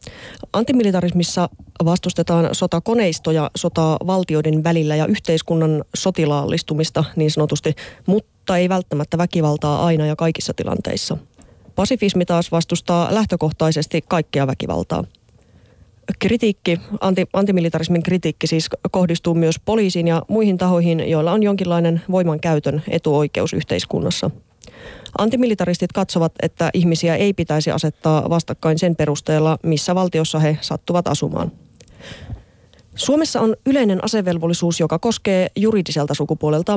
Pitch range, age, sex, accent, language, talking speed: 155-185 Hz, 30-49, female, native, Finnish, 105 wpm